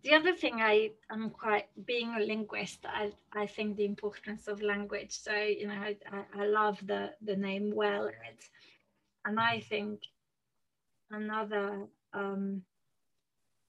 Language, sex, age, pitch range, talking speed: English, female, 30-49, 205-215 Hz, 135 wpm